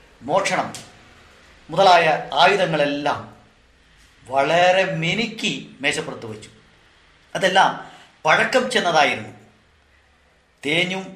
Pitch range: 120-175 Hz